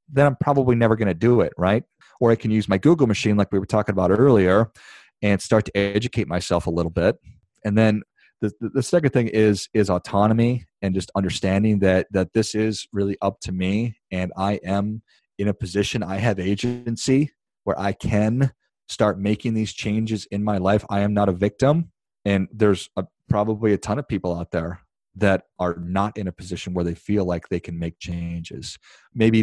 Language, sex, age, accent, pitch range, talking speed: English, male, 30-49, American, 95-110 Hz, 205 wpm